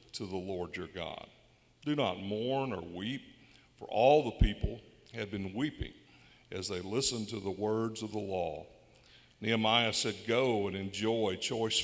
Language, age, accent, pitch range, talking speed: English, 60-79, American, 95-120 Hz, 160 wpm